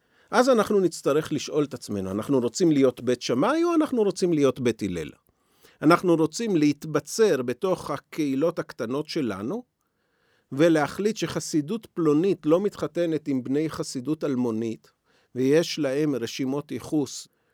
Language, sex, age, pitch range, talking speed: Hebrew, male, 40-59, 130-200 Hz, 125 wpm